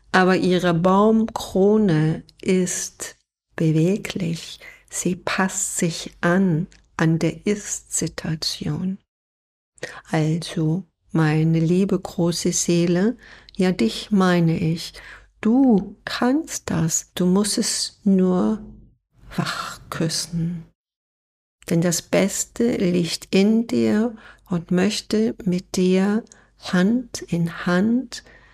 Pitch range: 165-200 Hz